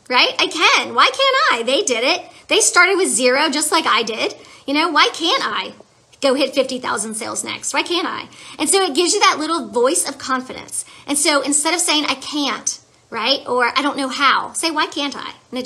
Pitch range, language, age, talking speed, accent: 260-320 Hz, English, 40-59, 225 wpm, American